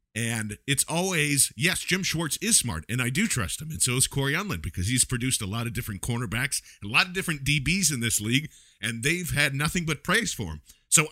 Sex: male